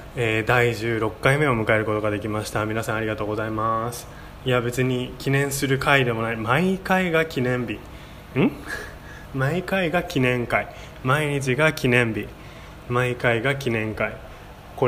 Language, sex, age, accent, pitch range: Japanese, male, 20-39, native, 110-130 Hz